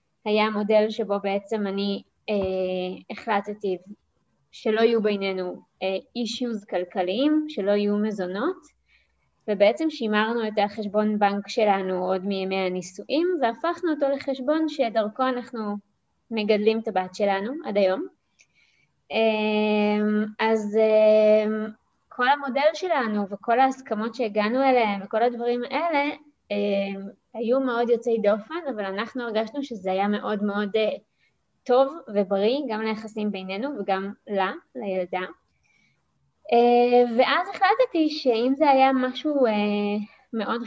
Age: 20-39